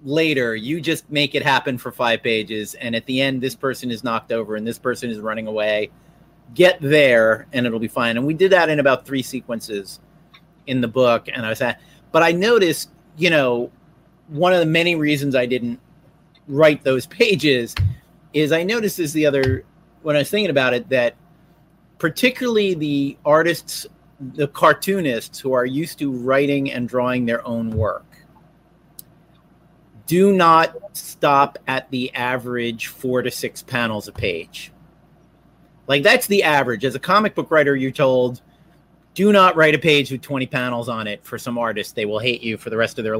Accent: American